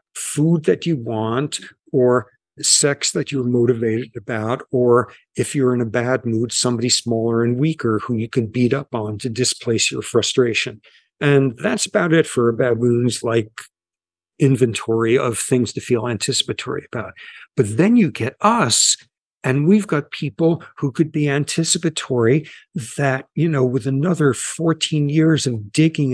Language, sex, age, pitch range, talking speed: English, male, 50-69, 125-155 Hz, 155 wpm